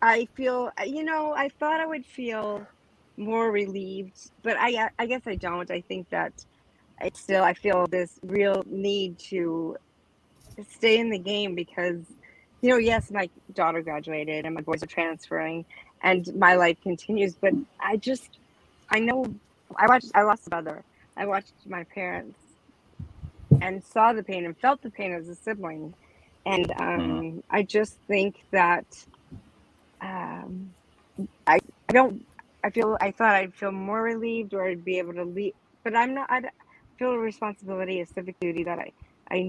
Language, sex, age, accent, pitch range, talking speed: English, female, 30-49, American, 175-225 Hz, 170 wpm